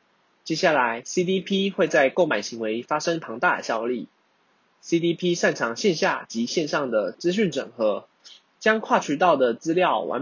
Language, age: Chinese, 20-39